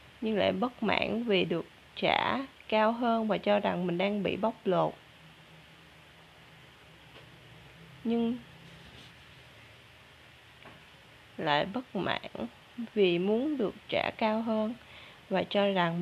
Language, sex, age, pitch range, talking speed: Vietnamese, female, 20-39, 180-230 Hz, 110 wpm